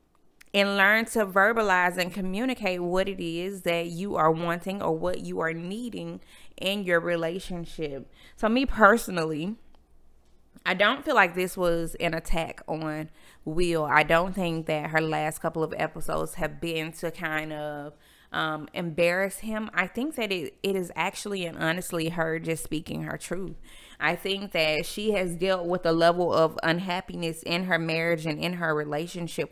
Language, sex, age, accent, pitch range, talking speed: English, female, 20-39, American, 160-195 Hz, 170 wpm